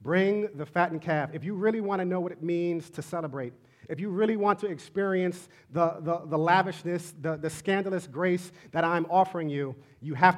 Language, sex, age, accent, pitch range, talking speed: English, male, 40-59, American, 160-205 Hz, 200 wpm